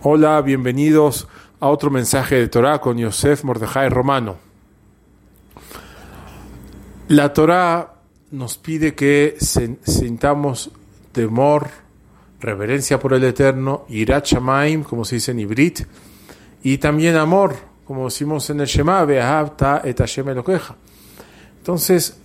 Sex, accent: male, Argentinian